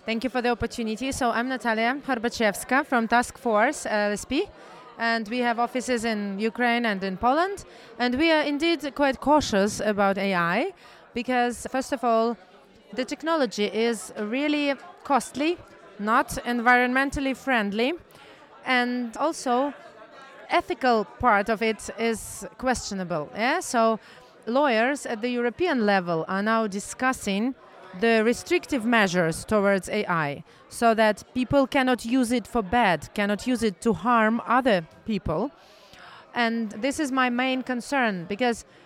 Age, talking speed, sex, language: 30-49, 135 wpm, female, English